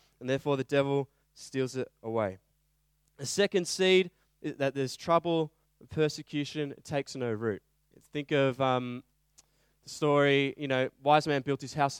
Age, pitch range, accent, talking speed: 20-39, 130-150 Hz, Australian, 155 wpm